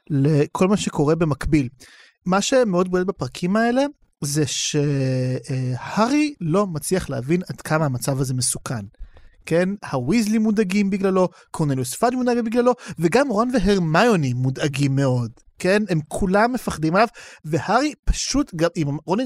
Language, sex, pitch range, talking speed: Hebrew, male, 145-230 Hz, 130 wpm